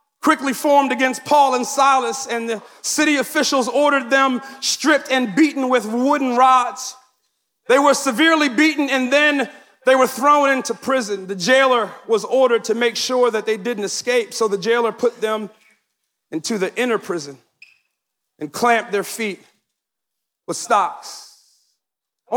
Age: 40-59